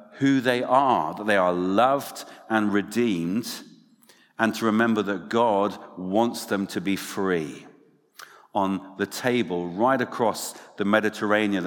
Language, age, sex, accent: English, 50-69, male, British